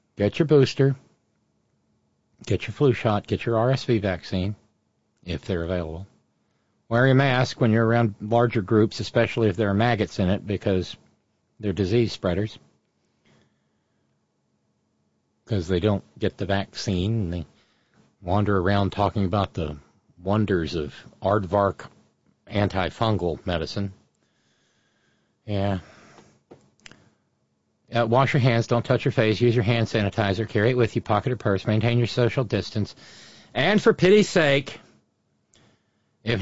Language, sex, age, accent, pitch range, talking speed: English, male, 50-69, American, 95-120 Hz, 130 wpm